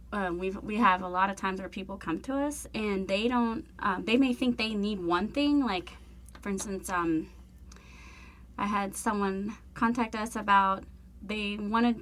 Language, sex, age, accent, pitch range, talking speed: English, female, 20-39, American, 185-235 Hz, 180 wpm